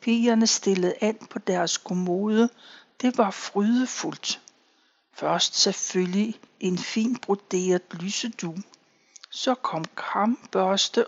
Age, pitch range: 60-79, 185-230 Hz